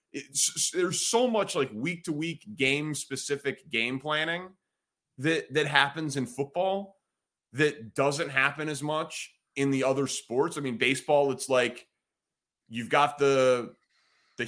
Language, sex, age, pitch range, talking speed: English, male, 30-49, 120-160 Hz, 145 wpm